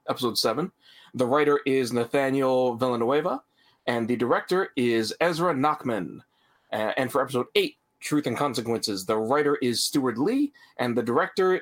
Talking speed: 150 wpm